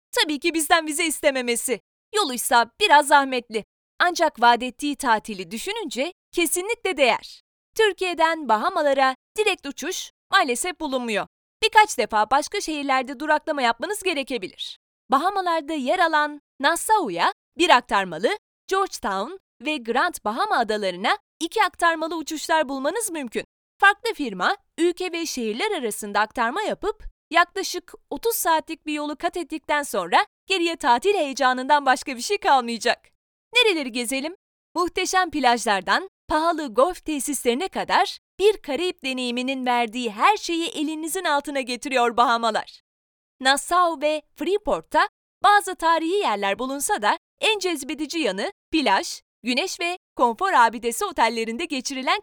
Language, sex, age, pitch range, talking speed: Turkish, female, 20-39, 255-365 Hz, 120 wpm